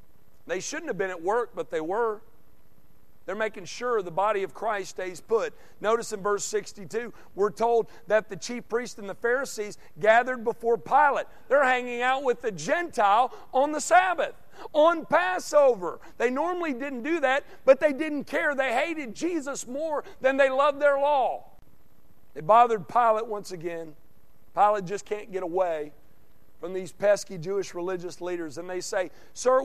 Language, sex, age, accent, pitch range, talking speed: English, male, 50-69, American, 195-285 Hz, 170 wpm